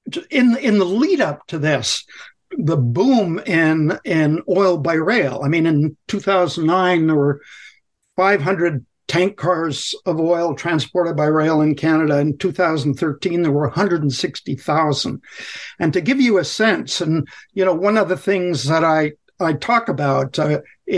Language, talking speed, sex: English, 155 wpm, male